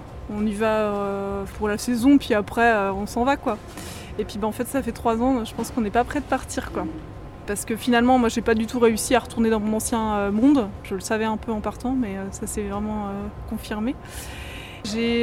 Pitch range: 225-270 Hz